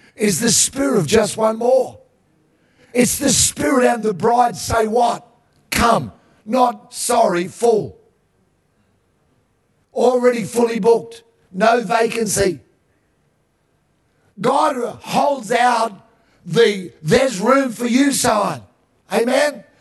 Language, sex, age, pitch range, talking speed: English, male, 50-69, 200-245 Hz, 105 wpm